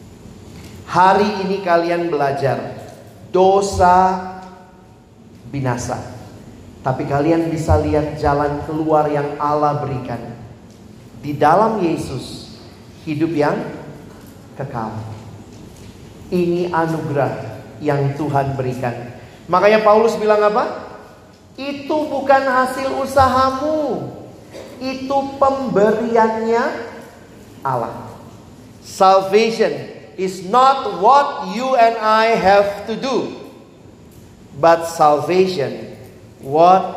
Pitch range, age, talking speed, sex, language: 120-190 Hz, 40-59, 85 wpm, male, Indonesian